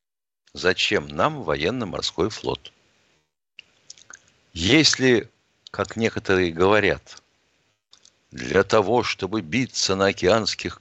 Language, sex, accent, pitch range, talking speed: Russian, male, native, 95-115 Hz, 80 wpm